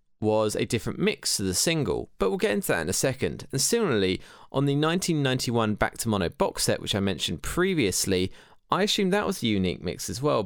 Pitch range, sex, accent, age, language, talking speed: 105-170 Hz, male, British, 20-39, English, 220 wpm